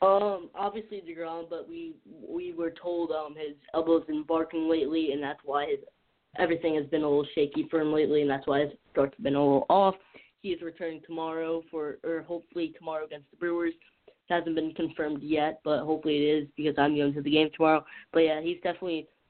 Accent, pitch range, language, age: American, 150-170 Hz, English, 10-29